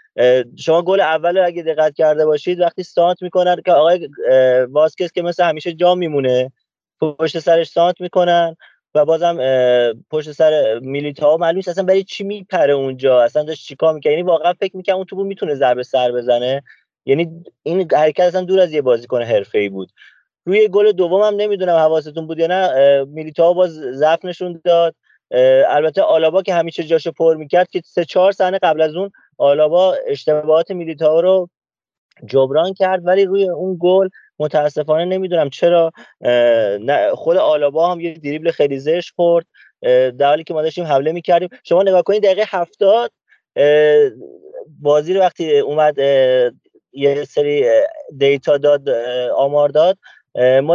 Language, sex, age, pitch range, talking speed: Persian, male, 30-49, 150-190 Hz, 150 wpm